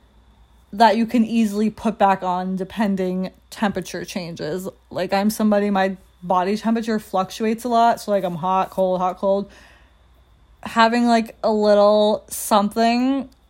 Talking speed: 140 wpm